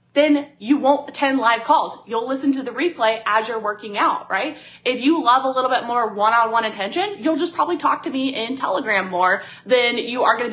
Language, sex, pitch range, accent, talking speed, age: English, female, 210-265 Hz, American, 215 wpm, 20-39